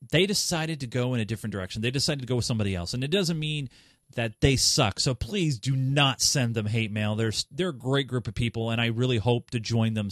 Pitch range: 110-140 Hz